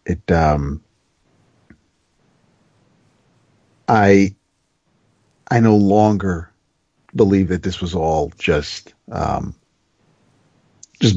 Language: English